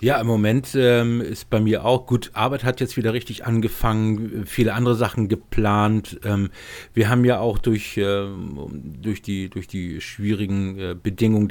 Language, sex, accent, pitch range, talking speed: German, male, German, 100-120 Hz, 155 wpm